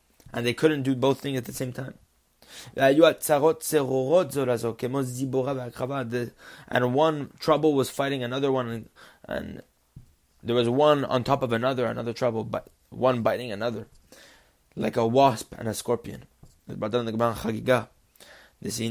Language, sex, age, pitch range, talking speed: English, male, 20-39, 120-150 Hz, 120 wpm